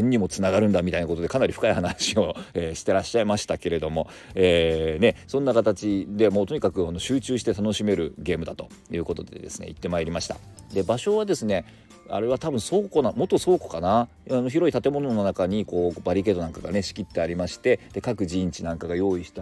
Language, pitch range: Japanese, 85-115 Hz